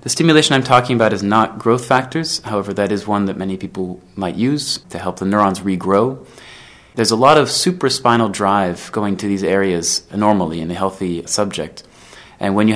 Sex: male